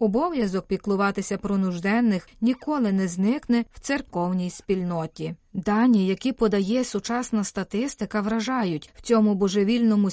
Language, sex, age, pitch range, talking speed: Ukrainian, female, 30-49, 195-245 Hz, 115 wpm